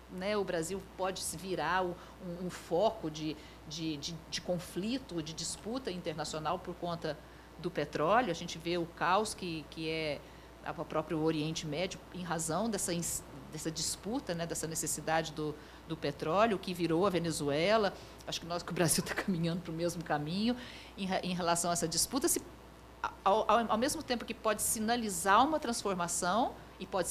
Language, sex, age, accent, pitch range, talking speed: Portuguese, female, 50-69, Brazilian, 165-220 Hz, 175 wpm